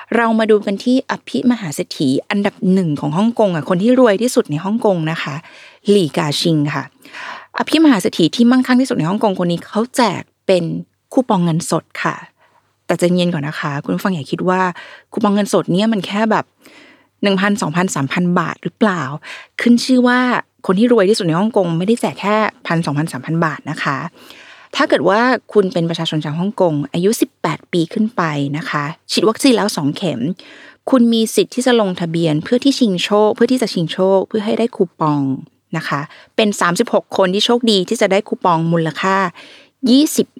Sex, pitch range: female, 170-225 Hz